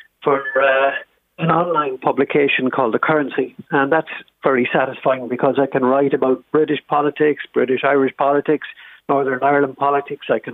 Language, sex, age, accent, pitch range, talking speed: English, male, 50-69, Irish, 135-160 Hz, 155 wpm